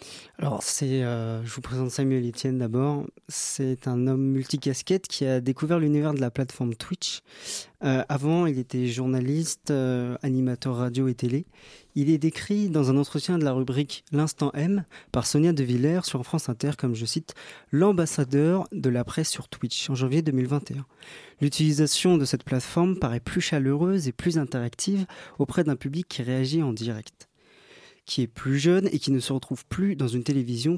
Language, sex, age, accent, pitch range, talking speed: French, male, 30-49, French, 130-160 Hz, 175 wpm